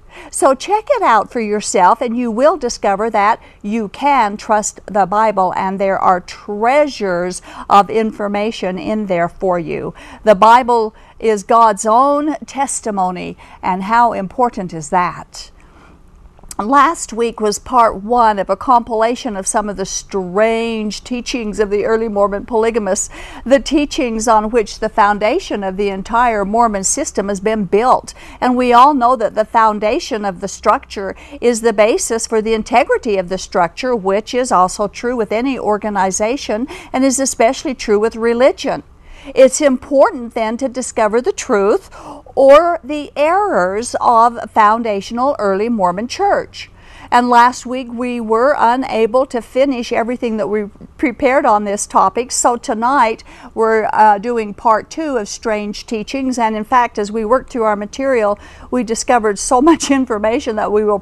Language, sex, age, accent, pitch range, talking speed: English, female, 50-69, American, 205-250 Hz, 155 wpm